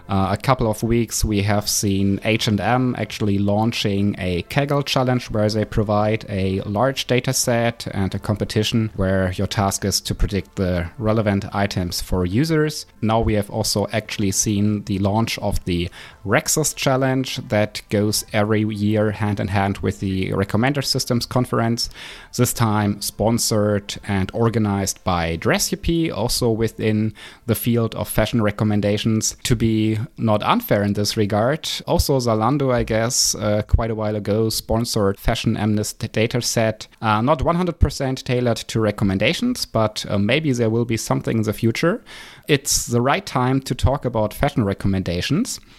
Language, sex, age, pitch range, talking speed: English, male, 30-49, 100-120 Hz, 155 wpm